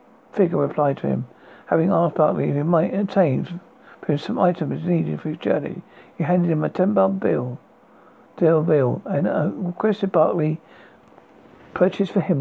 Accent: British